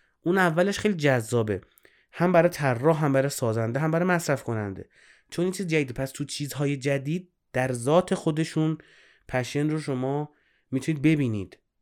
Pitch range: 110-150 Hz